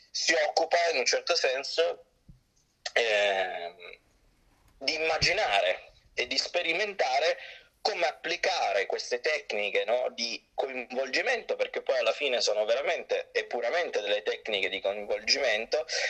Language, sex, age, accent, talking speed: Italian, male, 30-49, native, 110 wpm